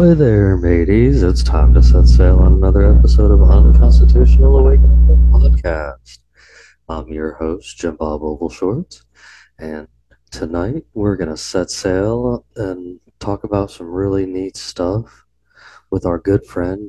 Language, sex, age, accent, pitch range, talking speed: English, male, 30-49, American, 85-105 Hz, 135 wpm